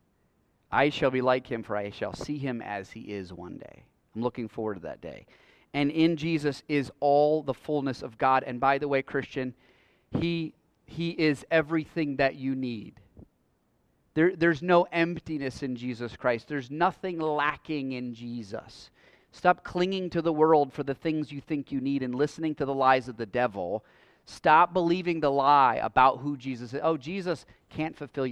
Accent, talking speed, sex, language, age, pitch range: American, 180 wpm, male, English, 30-49, 125-160 Hz